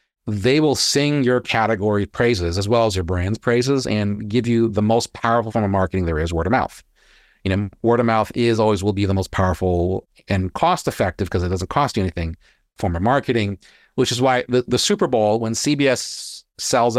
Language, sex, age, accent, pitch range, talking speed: English, male, 40-59, American, 100-125 Hz, 210 wpm